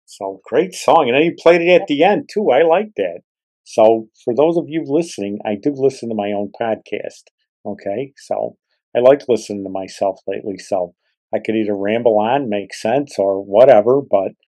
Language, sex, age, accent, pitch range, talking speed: English, male, 50-69, American, 105-130 Hz, 195 wpm